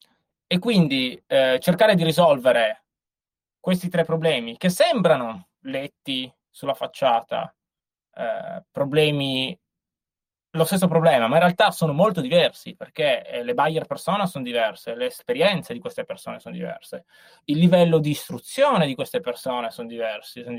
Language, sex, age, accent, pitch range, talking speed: Italian, male, 20-39, native, 135-195 Hz, 145 wpm